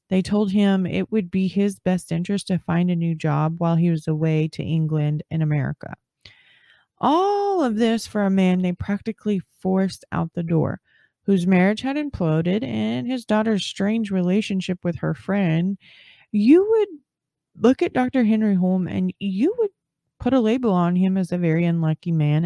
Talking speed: 175 wpm